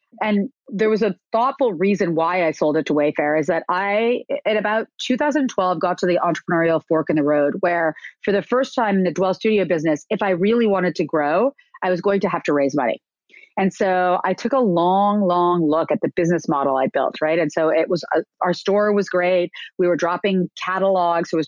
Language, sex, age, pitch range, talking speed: English, female, 30-49, 160-200 Hz, 225 wpm